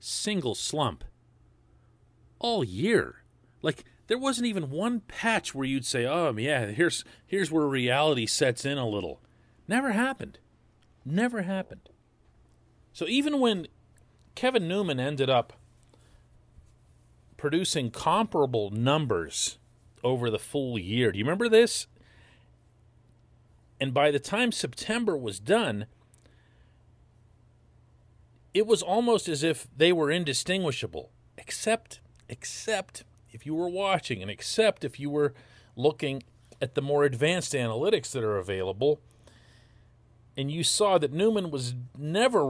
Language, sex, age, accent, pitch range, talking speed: English, male, 40-59, American, 115-180 Hz, 125 wpm